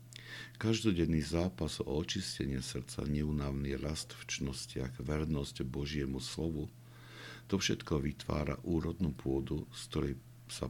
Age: 60-79